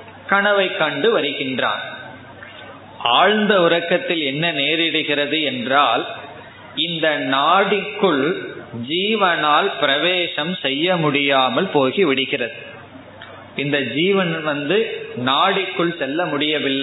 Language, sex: Tamil, male